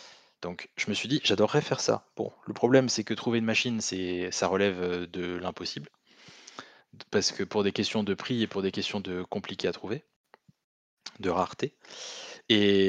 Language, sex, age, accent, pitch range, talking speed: French, male, 20-39, French, 100-125 Hz, 180 wpm